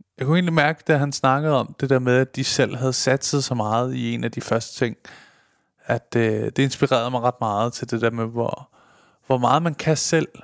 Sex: male